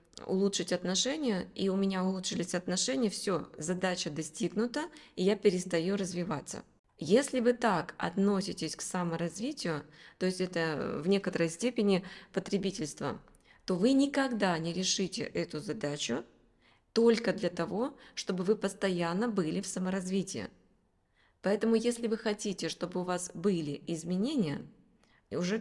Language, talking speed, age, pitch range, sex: Russian, 125 wpm, 20-39, 170-215 Hz, female